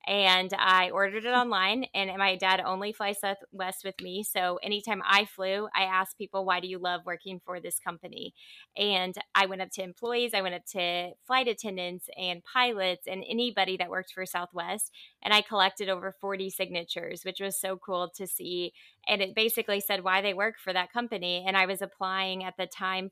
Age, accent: 20-39, American